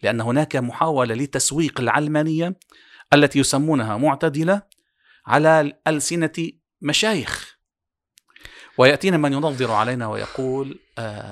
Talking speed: 85 wpm